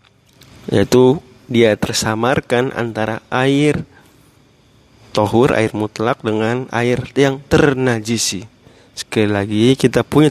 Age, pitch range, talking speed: 30-49, 110-130 Hz, 95 wpm